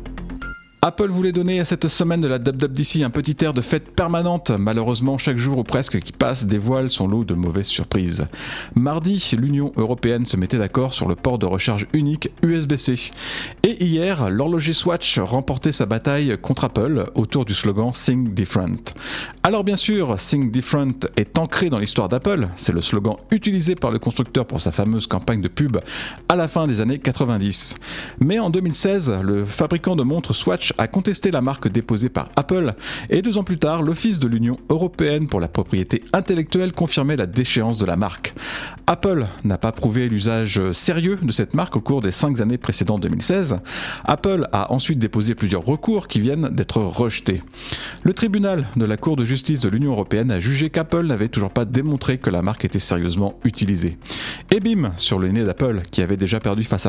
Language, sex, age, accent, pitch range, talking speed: French, male, 40-59, French, 105-155 Hz, 190 wpm